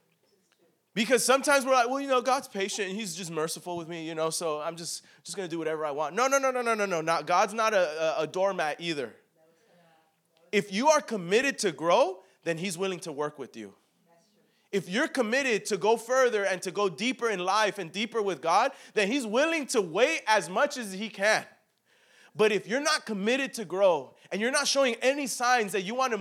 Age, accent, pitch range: 20-39, American, 185-255 Hz